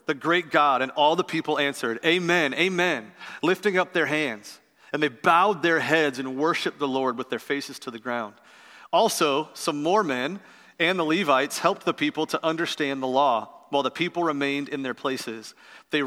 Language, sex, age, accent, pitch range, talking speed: English, male, 40-59, American, 130-170 Hz, 190 wpm